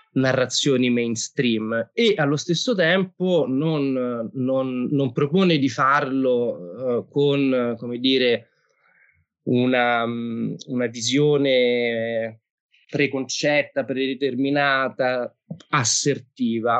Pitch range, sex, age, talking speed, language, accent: 115-155 Hz, male, 20-39, 80 wpm, Italian, native